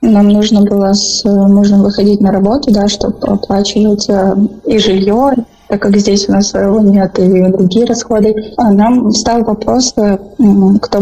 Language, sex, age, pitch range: Romanian, female, 20-39, 200-220 Hz